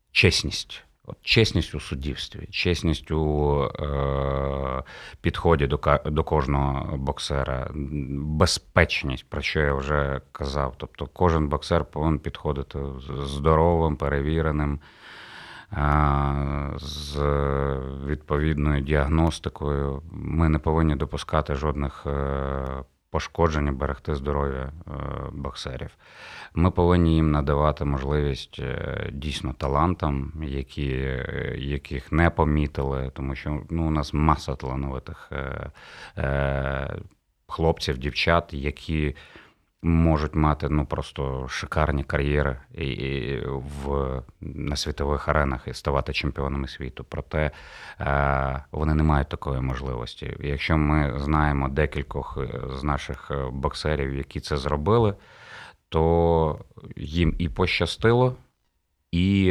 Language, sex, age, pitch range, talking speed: Ukrainian, male, 30-49, 70-80 Hz, 95 wpm